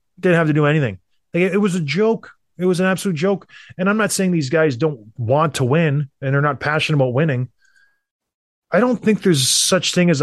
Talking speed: 215 wpm